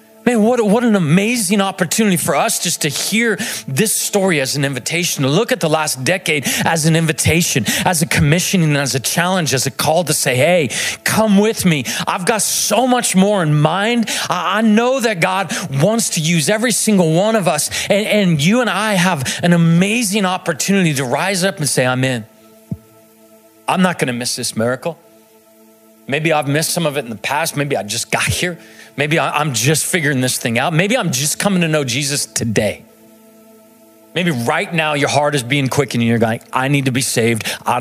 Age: 40-59